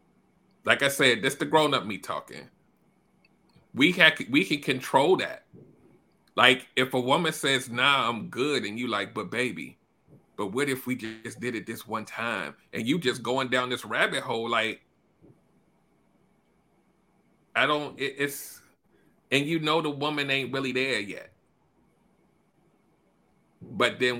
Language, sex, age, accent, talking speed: English, male, 30-49, American, 150 wpm